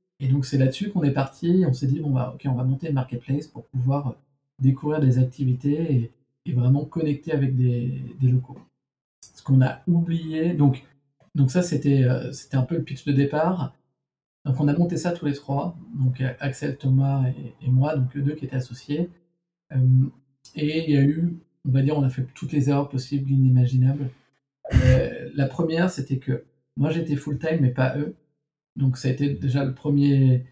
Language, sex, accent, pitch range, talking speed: French, male, French, 130-150 Hz, 200 wpm